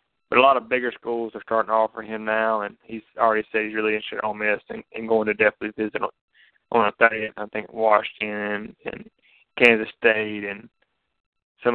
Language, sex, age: English, male, 20-39